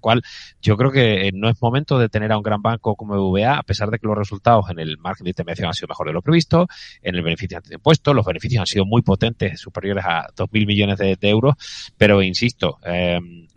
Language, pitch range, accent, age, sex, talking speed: Spanish, 95-120 Hz, Spanish, 30-49, male, 235 wpm